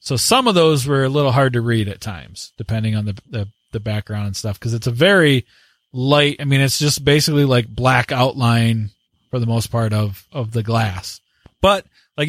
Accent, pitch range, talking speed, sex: American, 120-150 Hz, 210 wpm, male